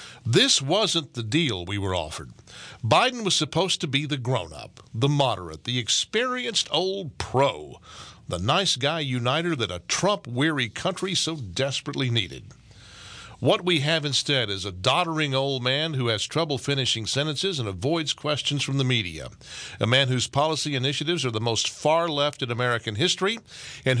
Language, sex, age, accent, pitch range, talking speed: English, male, 50-69, American, 110-155 Hz, 165 wpm